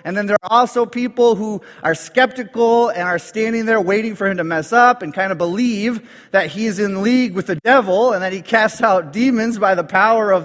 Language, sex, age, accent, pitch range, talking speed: English, male, 30-49, American, 140-210 Hz, 230 wpm